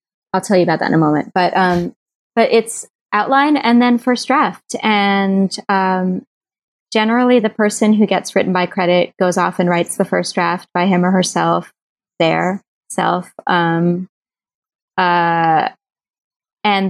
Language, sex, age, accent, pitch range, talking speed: English, female, 20-39, American, 175-215 Hz, 155 wpm